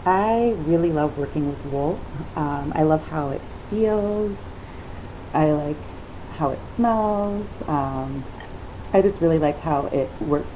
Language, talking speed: English, 140 wpm